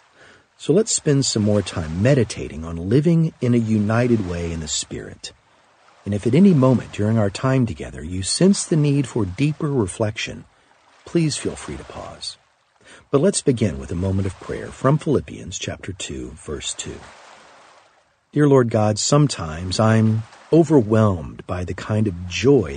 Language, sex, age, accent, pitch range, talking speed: English, male, 50-69, American, 95-140 Hz, 165 wpm